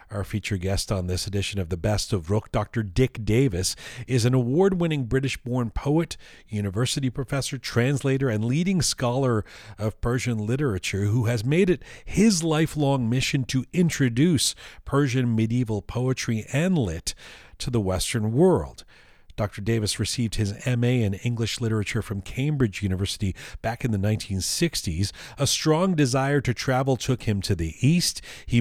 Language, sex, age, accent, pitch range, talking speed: English, male, 40-59, American, 105-135 Hz, 150 wpm